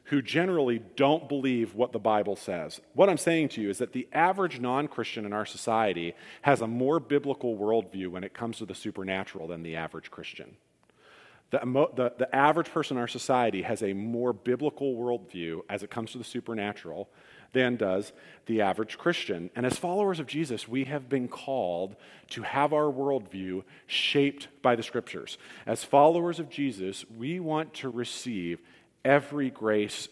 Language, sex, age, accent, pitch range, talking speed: English, male, 40-59, American, 105-140 Hz, 175 wpm